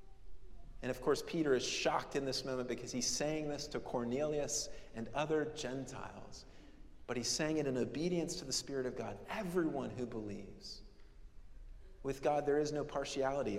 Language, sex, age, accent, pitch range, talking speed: English, male, 40-59, American, 125-165 Hz, 170 wpm